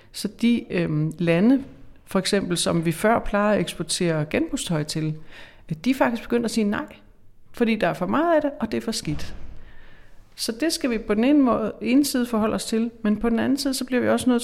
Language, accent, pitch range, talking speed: Danish, native, 175-230 Hz, 235 wpm